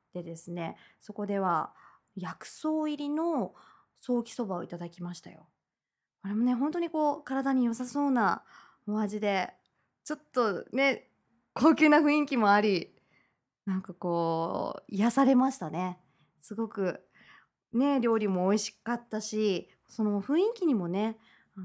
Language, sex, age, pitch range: Japanese, female, 20-39, 200-305 Hz